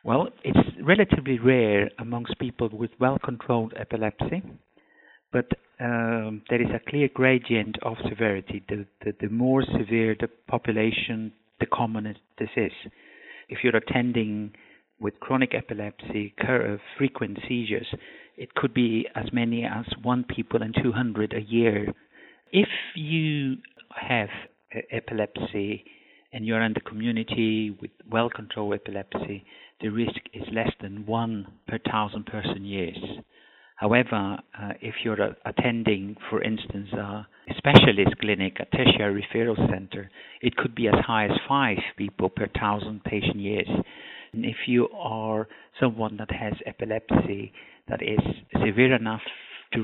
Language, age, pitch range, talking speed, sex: English, 50-69, 105-120 Hz, 135 wpm, male